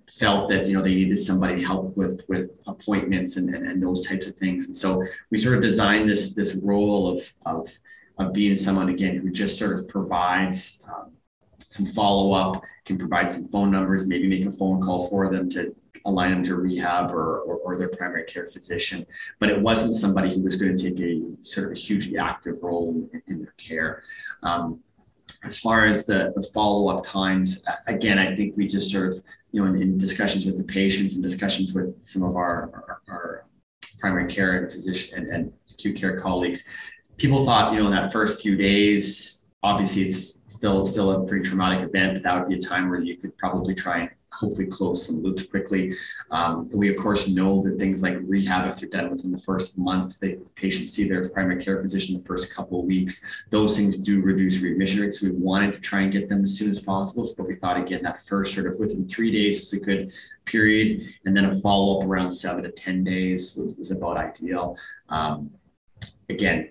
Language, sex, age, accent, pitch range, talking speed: English, male, 30-49, American, 90-100 Hz, 215 wpm